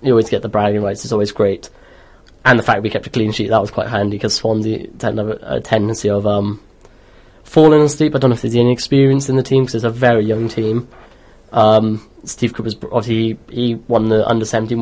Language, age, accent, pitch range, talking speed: English, 20-39, British, 110-125 Hz, 230 wpm